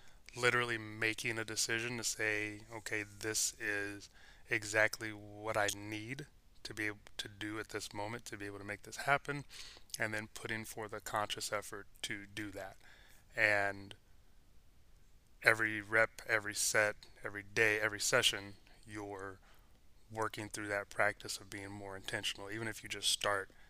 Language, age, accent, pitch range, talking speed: English, 20-39, American, 100-110 Hz, 155 wpm